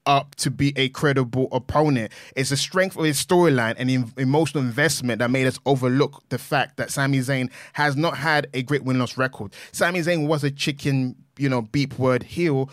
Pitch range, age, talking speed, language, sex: 140-210 Hz, 20-39, 200 wpm, English, male